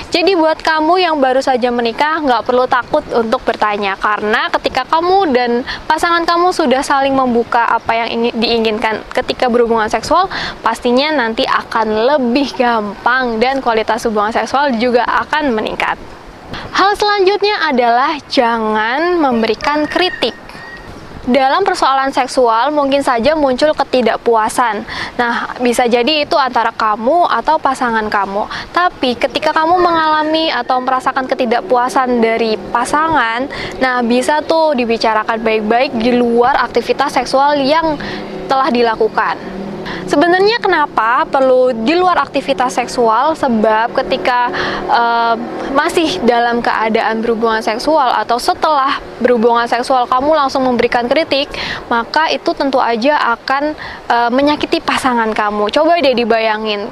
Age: 10-29